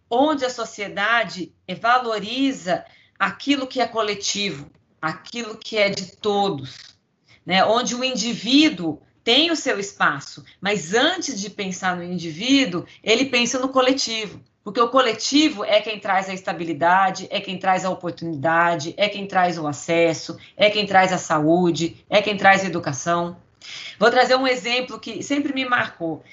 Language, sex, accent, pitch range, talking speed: Portuguese, female, Brazilian, 180-240 Hz, 155 wpm